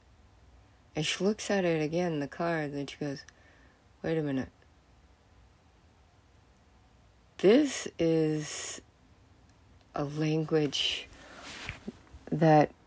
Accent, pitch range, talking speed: American, 100-160 Hz, 95 wpm